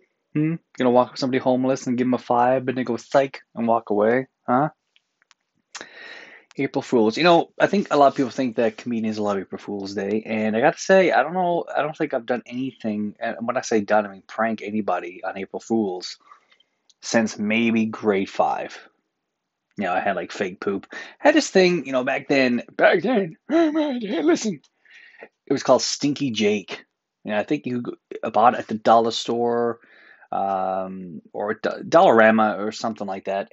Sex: male